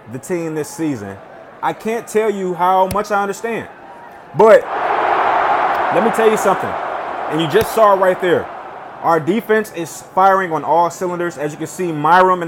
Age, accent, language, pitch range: 20-39, American, English, 160-195 Hz